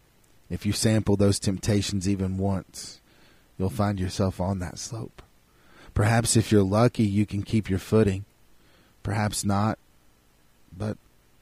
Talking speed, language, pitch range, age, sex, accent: 130 wpm, English, 95-105 Hz, 30-49, male, American